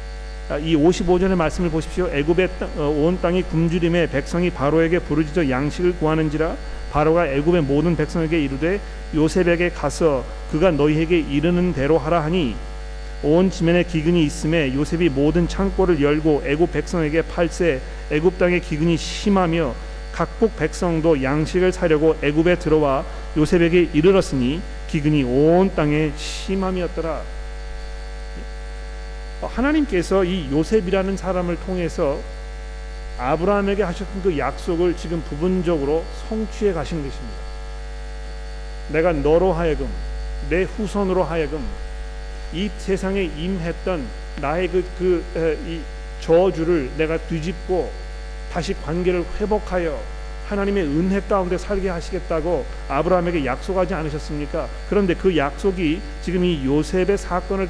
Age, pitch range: 40-59, 150-180 Hz